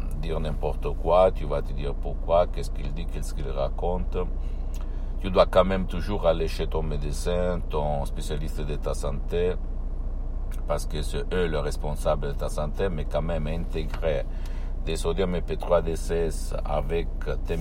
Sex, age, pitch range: male, 60-79, 65-80 Hz